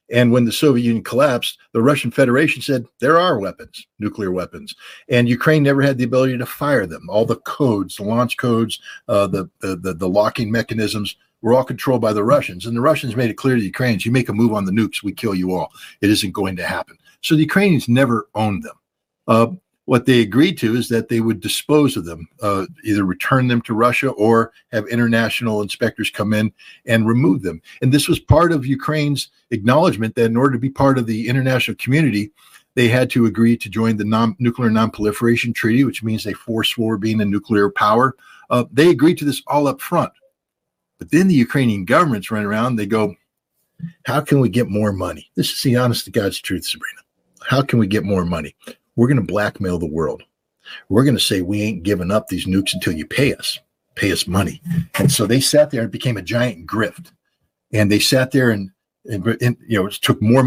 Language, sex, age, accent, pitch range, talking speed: English, male, 60-79, American, 110-130 Hz, 215 wpm